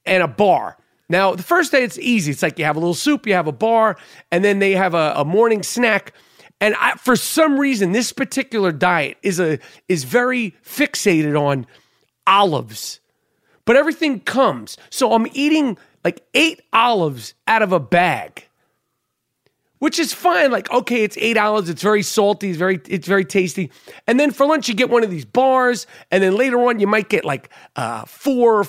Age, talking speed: 40-59, 195 wpm